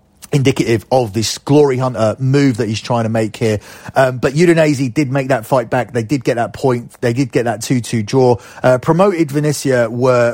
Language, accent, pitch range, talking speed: English, British, 115-140 Hz, 205 wpm